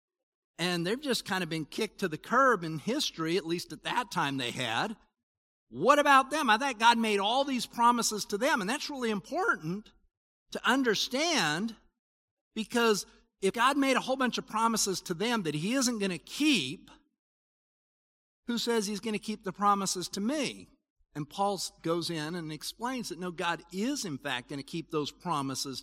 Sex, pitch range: male, 170-240 Hz